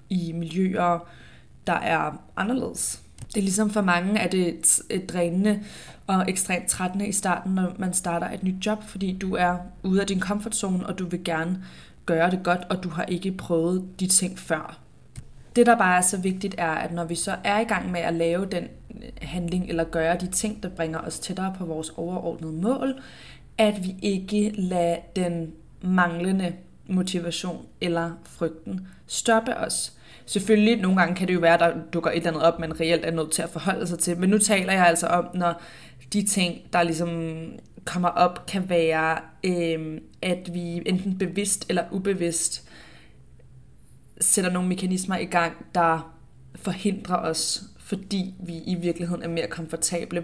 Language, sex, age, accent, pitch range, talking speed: Danish, female, 20-39, native, 165-190 Hz, 175 wpm